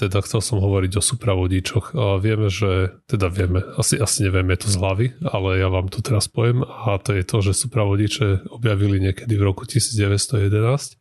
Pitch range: 95-115 Hz